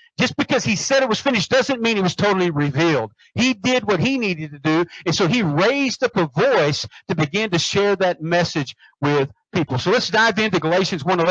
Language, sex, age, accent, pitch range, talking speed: English, male, 50-69, American, 175-230 Hz, 220 wpm